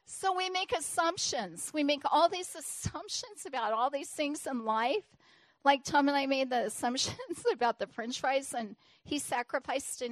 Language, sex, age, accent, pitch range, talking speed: English, female, 40-59, American, 230-295 Hz, 180 wpm